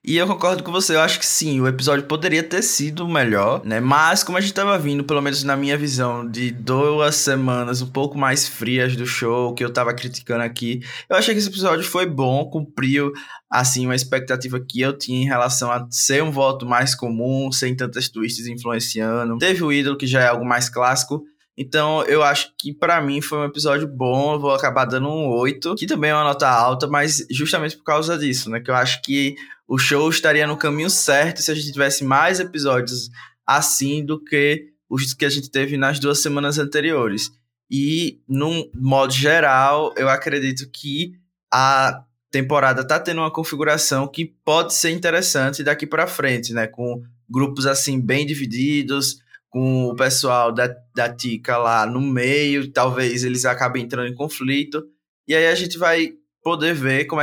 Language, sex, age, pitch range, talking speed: Portuguese, male, 20-39, 125-150 Hz, 190 wpm